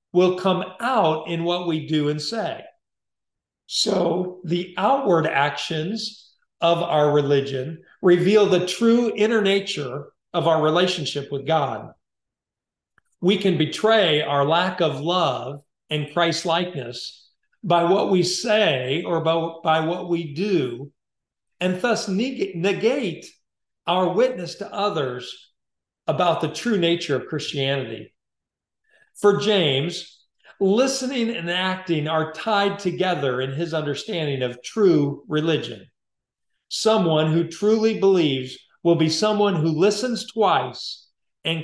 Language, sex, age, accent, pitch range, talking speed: English, male, 50-69, American, 150-200 Hz, 120 wpm